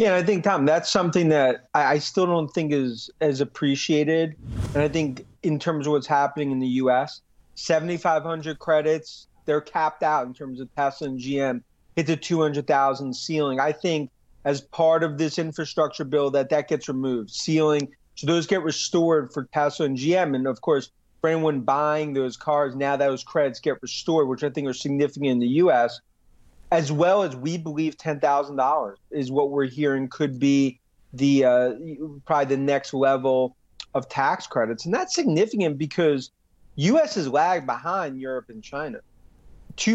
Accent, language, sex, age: American, English, male, 30-49